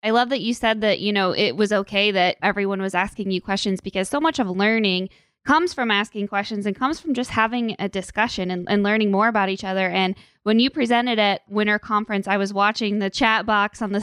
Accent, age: American, 20-39